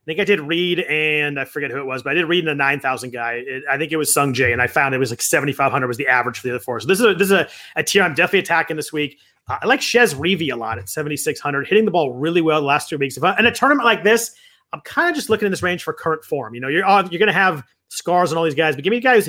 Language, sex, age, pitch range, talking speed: English, male, 30-49, 145-190 Hz, 335 wpm